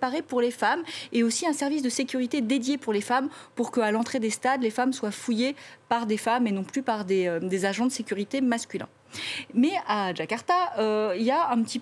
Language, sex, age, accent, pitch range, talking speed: French, female, 40-59, French, 205-270 Hz, 230 wpm